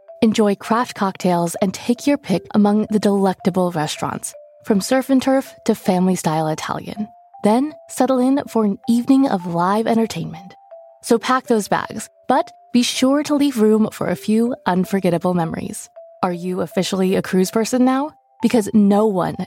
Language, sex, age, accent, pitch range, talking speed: English, female, 20-39, American, 180-235 Hz, 160 wpm